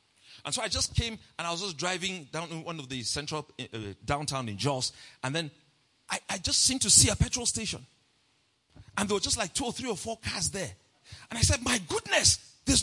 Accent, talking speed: Nigerian, 225 wpm